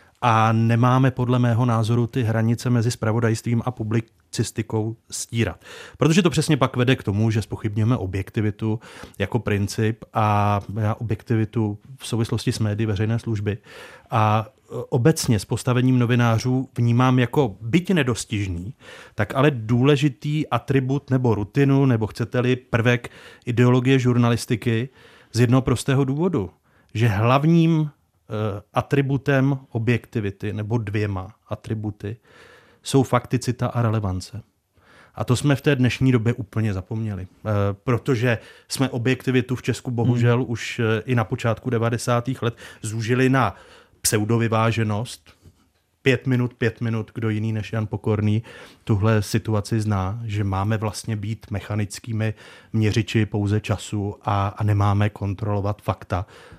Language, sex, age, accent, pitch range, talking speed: Czech, male, 30-49, native, 105-125 Hz, 120 wpm